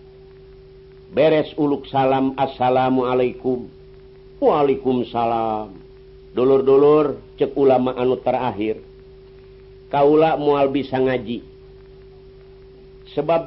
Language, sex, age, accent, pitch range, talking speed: Indonesian, male, 50-69, native, 130-150 Hz, 70 wpm